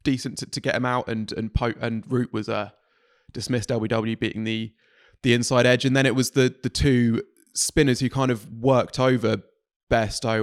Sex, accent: male, British